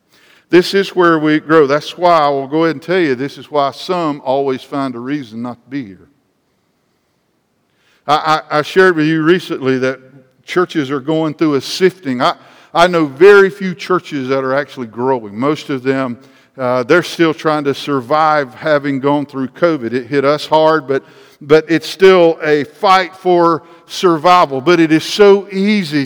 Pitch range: 150-195 Hz